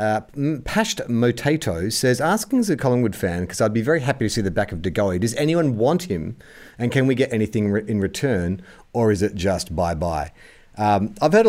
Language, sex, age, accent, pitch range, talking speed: English, male, 40-59, Australian, 95-135 Hz, 200 wpm